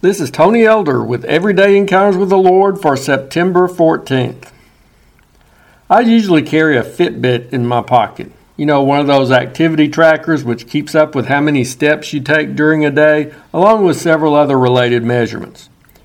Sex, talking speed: male, 170 wpm